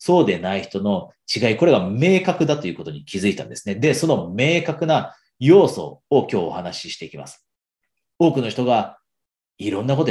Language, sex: Japanese, male